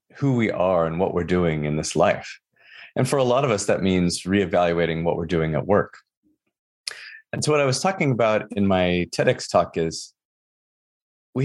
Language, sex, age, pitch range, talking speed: English, male, 30-49, 90-125 Hz, 195 wpm